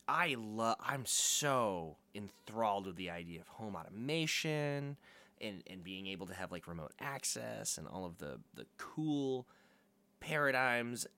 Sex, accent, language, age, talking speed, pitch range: male, American, English, 20-39, 145 wpm, 95-140 Hz